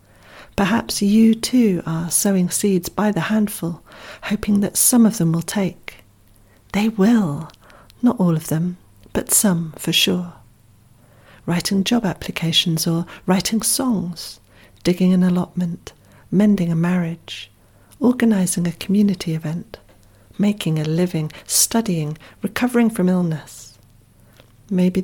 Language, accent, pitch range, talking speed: English, British, 155-200 Hz, 120 wpm